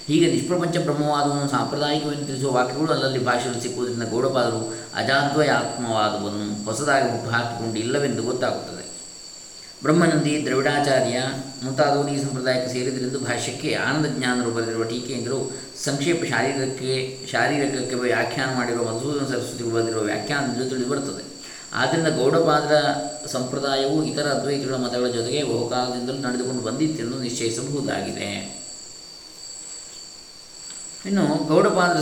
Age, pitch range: 20-39, 120-145 Hz